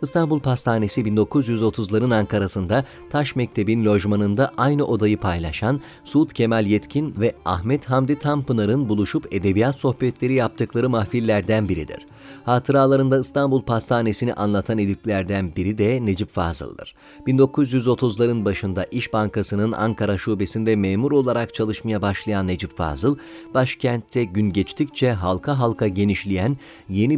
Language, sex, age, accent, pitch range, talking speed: Turkish, male, 40-59, native, 105-135 Hz, 115 wpm